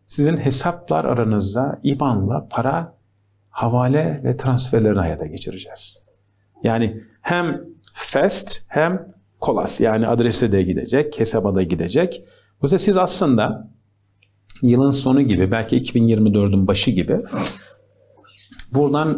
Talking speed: 110 wpm